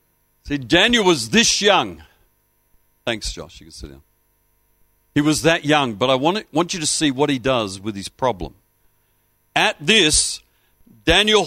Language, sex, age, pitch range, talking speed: English, male, 60-79, 120-170 Hz, 150 wpm